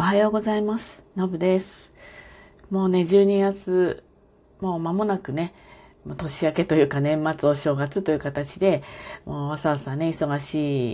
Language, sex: Japanese, female